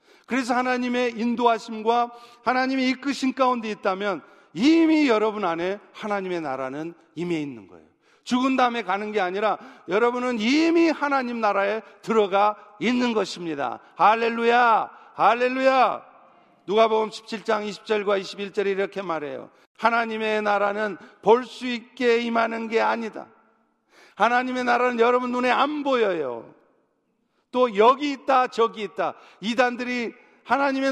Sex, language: male, Korean